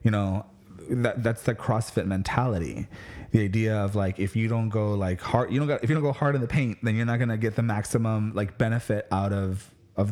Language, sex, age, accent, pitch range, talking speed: English, male, 20-39, American, 100-120 Hz, 235 wpm